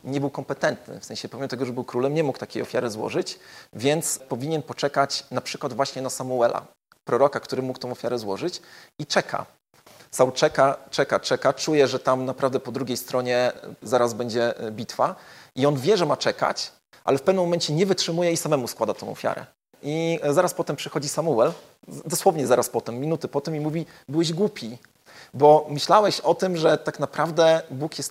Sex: male